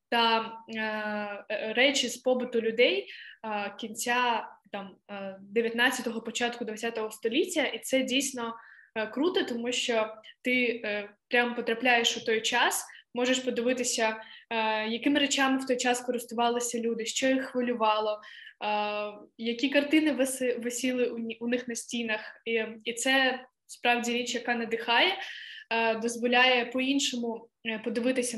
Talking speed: 125 wpm